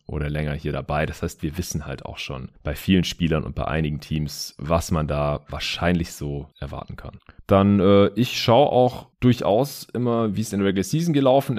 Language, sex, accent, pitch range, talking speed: German, male, German, 80-100 Hz, 200 wpm